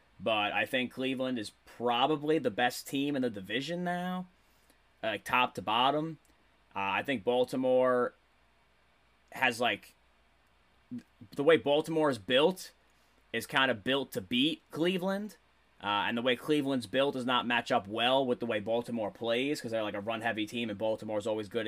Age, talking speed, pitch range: 20-39, 170 wpm, 115-135 Hz